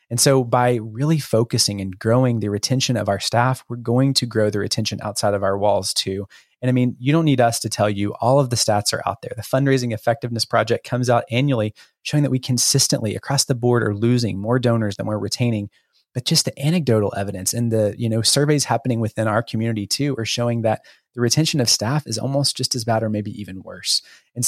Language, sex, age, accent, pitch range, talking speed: English, male, 20-39, American, 105-125 Hz, 230 wpm